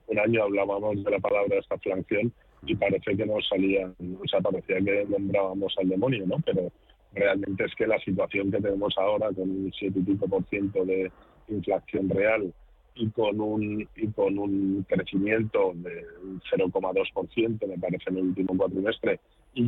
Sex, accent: male, Spanish